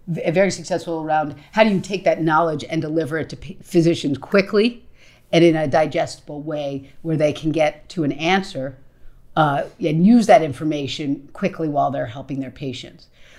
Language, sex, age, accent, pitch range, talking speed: English, female, 50-69, American, 140-170 Hz, 170 wpm